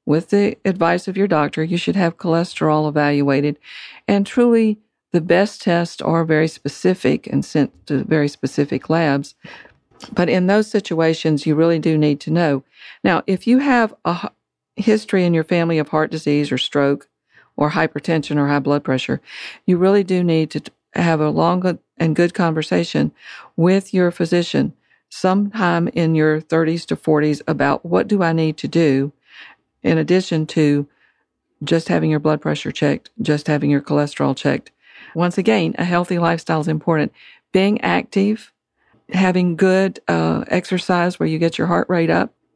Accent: American